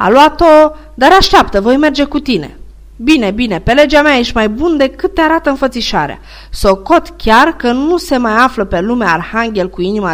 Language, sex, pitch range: Romanian, female, 175-265 Hz